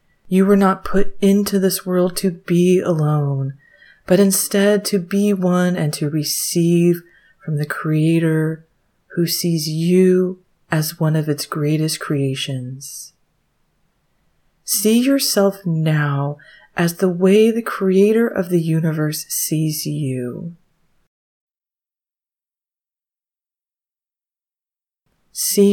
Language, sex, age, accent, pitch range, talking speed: English, female, 30-49, American, 155-190 Hz, 105 wpm